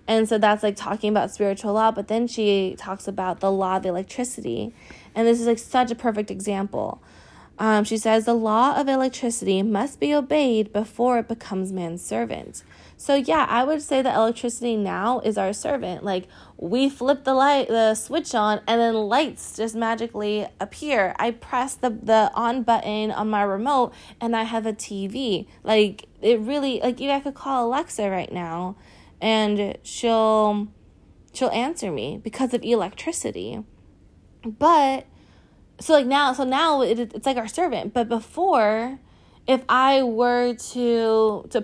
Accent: American